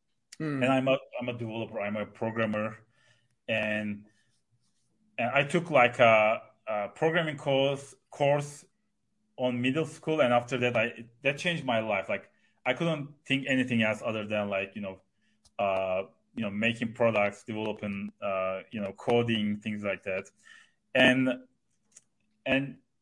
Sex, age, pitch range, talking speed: male, 30-49, 110-130 Hz, 150 wpm